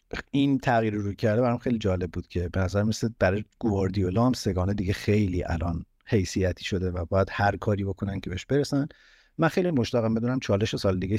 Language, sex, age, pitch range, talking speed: Persian, male, 50-69, 95-120 Hz, 210 wpm